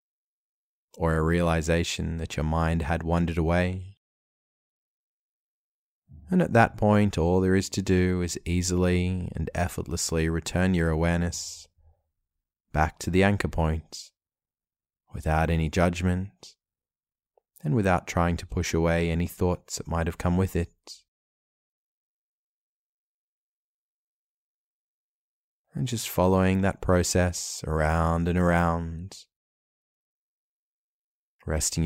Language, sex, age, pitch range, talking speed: English, male, 20-39, 80-90 Hz, 105 wpm